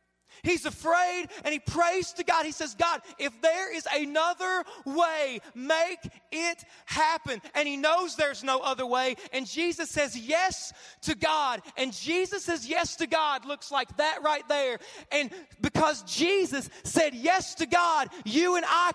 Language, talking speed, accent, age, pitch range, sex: English, 165 wpm, American, 30-49, 295-355 Hz, male